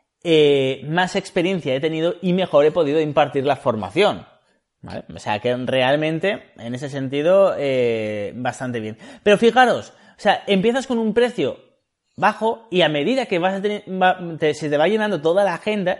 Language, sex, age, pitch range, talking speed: Spanish, male, 30-49, 140-195 Hz, 180 wpm